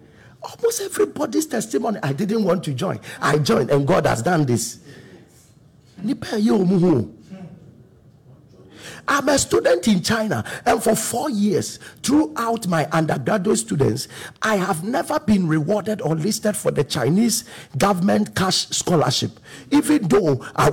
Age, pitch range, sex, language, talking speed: 50-69, 150-220 Hz, male, English, 125 wpm